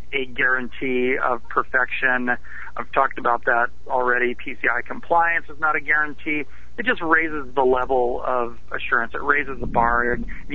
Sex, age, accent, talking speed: male, 40-59, American, 155 wpm